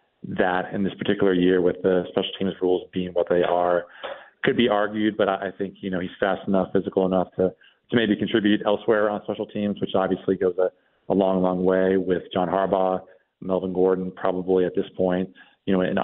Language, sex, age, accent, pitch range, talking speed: English, male, 30-49, American, 90-100 Hz, 205 wpm